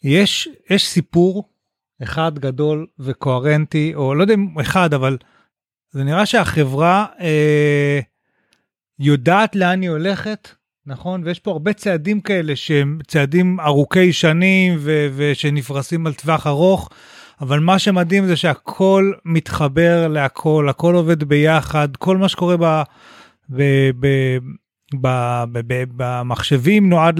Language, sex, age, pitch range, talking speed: Hebrew, male, 30-49, 140-180 Hz, 115 wpm